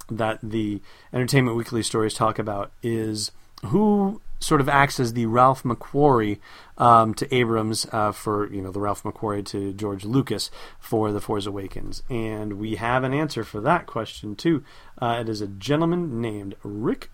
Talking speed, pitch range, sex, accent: 170 wpm, 110-140 Hz, male, American